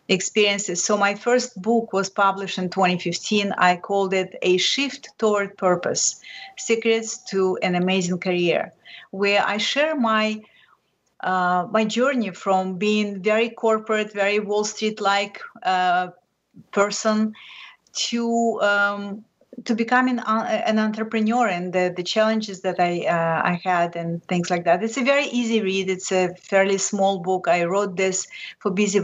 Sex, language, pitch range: female, English, 185-225 Hz